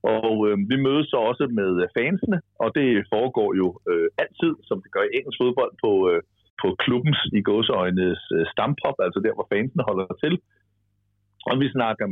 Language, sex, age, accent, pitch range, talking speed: Danish, male, 60-79, native, 100-145 Hz, 185 wpm